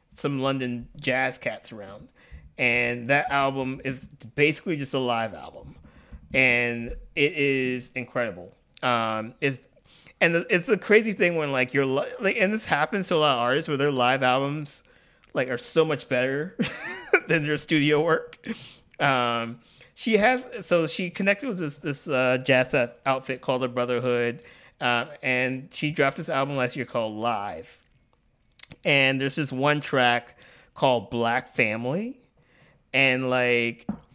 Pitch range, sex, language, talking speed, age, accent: 120-150 Hz, male, English, 155 wpm, 30-49, American